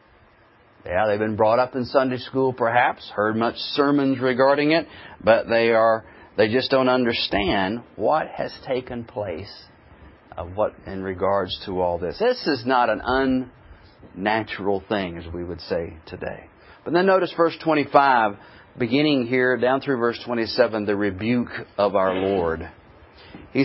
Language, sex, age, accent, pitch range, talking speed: English, male, 40-59, American, 110-150 Hz, 150 wpm